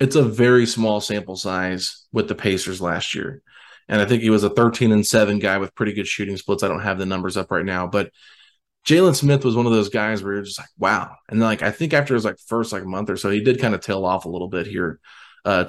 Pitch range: 100-115 Hz